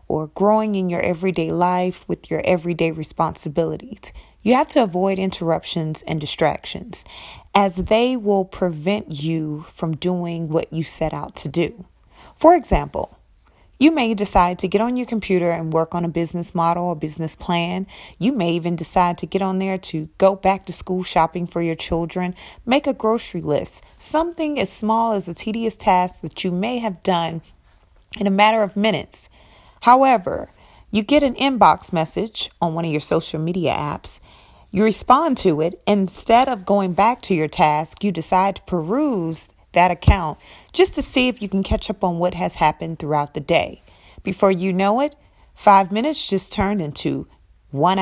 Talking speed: 175 wpm